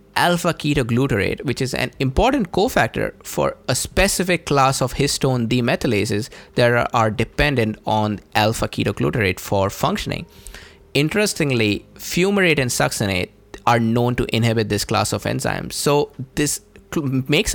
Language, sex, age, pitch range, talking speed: English, male, 20-39, 105-130 Hz, 125 wpm